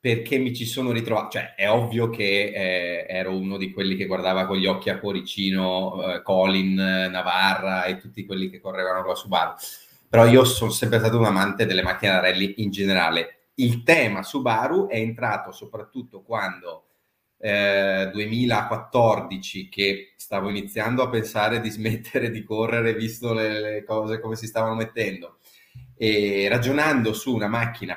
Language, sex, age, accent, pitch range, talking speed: Italian, male, 30-49, native, 95-120 Hz, 160 wpm